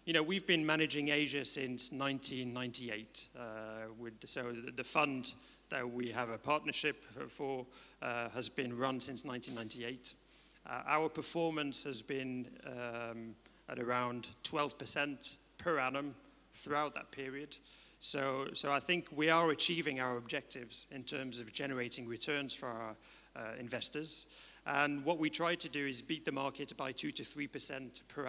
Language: English